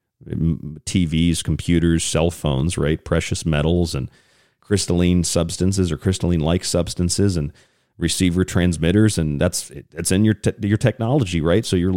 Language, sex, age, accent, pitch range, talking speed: English, male, 40-59, American, 80-110 Hz, 135 wpm